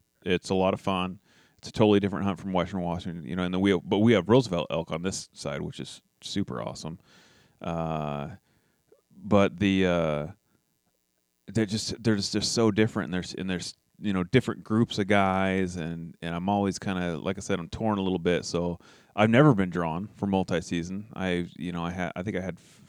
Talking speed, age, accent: 210 wpm, 30-49, American